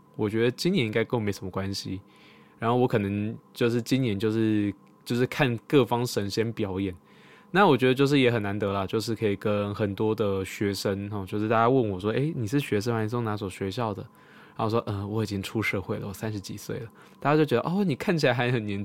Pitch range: 100-125 Hz